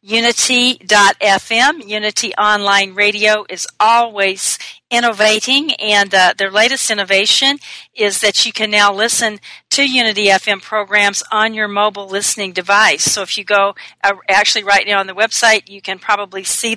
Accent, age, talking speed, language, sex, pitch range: American, 40-59, 150 wpm, English, female, 195-225 Hz